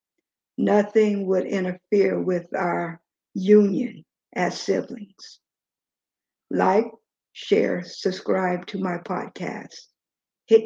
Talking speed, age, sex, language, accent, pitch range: 85 wpm, 60-79, female, English, American, 185-220 Hz